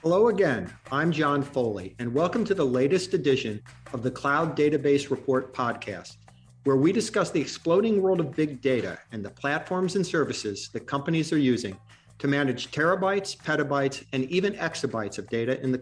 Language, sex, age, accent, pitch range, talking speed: English, male, 50-69, American, 120-160 Hz, 175 wpm